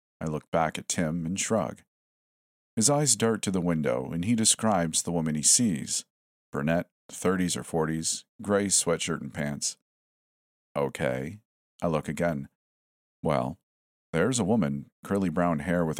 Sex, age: male, 50-69